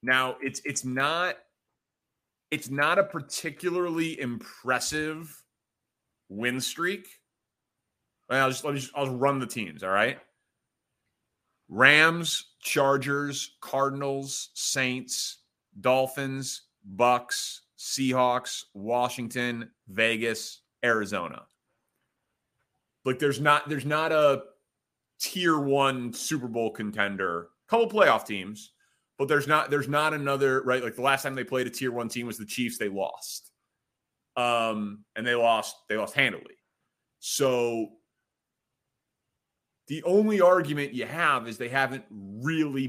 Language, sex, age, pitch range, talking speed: English, male, 30-49, 120-145 Hz, 125 wpm